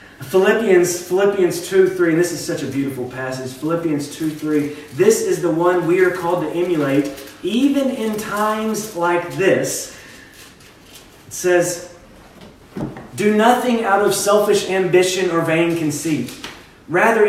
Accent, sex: American, male